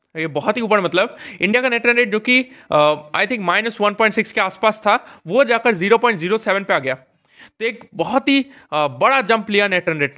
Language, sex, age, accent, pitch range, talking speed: Hindi, male, 20-39, native, 165-240 Hz, 205 wpm